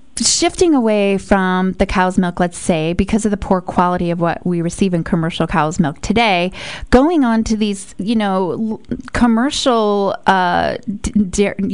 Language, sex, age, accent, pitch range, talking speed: English, female, 20-39, American, 185-235 Hz, 160 wpm